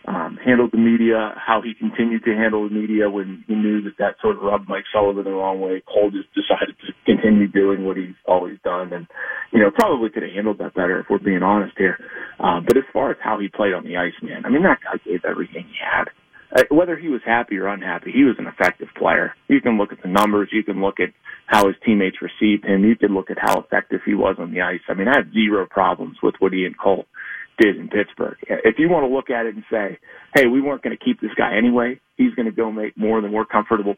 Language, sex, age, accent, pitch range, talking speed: English, male, 30-49, American, 100-115 Hz, 255 wpm